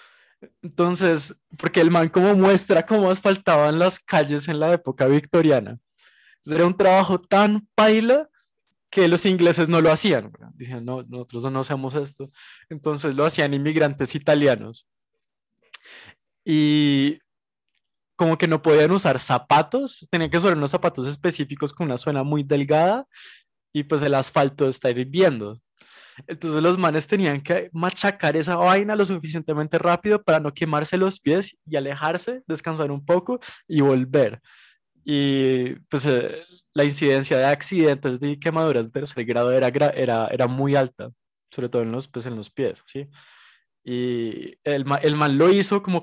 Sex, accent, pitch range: male, Colombian, 135-175 Hz